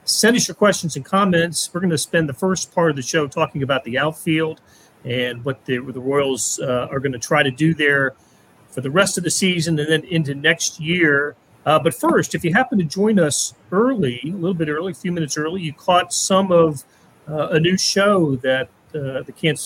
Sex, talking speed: male, 230 wpm